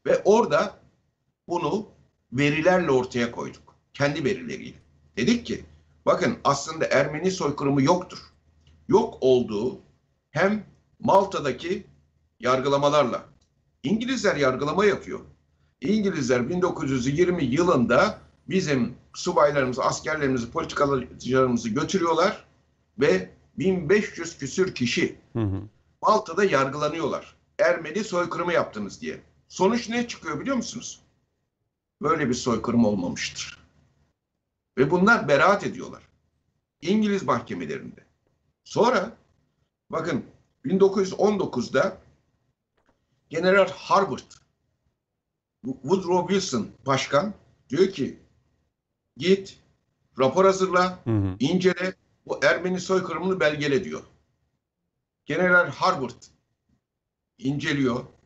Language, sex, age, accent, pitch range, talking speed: Turkish, male, 60-79, native, 125-190 Hz, 80 wpm